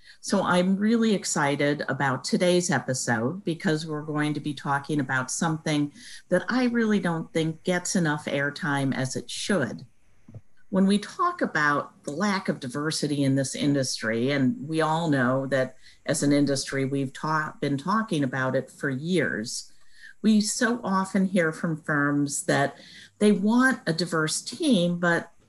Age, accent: 50-69, American